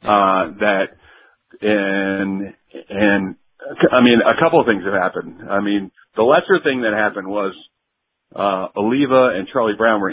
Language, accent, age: English, American, 40-59